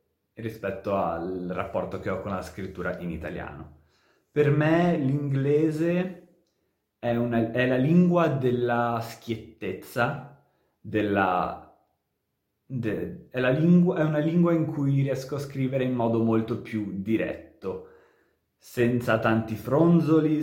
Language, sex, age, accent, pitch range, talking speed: Italian, male, 30-49, native, 105-145 Hz, 120 wpm